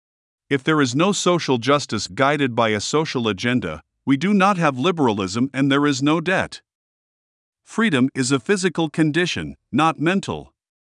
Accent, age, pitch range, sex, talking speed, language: American, 50-69, 120-155 Hz, male, 155 wpm, English